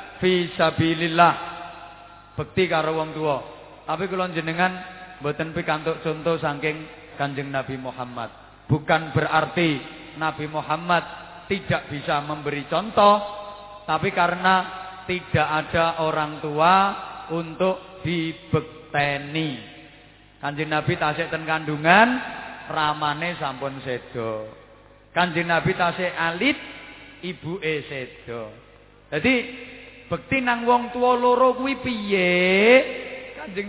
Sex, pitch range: male, 150-195 Hz